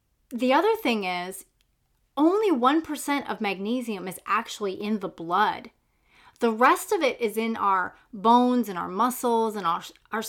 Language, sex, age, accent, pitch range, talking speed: English, female, 30-49, American, 195-250 Hz, 155 wpm